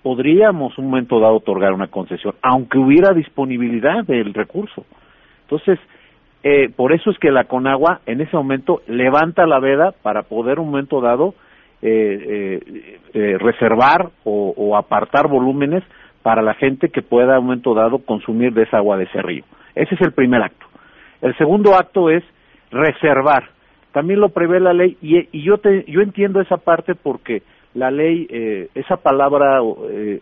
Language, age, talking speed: Spanish, 50-69, 165 wpm